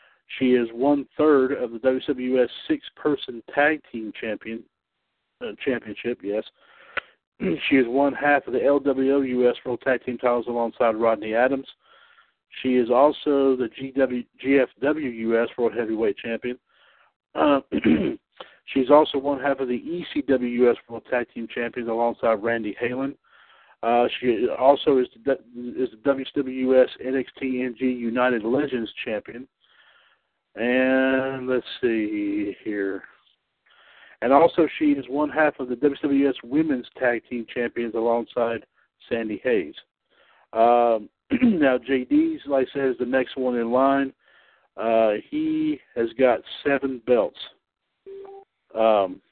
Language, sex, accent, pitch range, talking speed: English, male, American, 120-140 Hz, 130 wpm